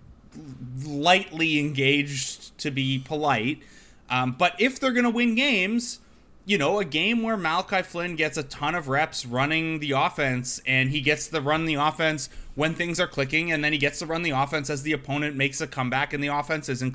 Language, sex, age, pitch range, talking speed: English, male, 20-39, 135-160 Hz, 200 wpm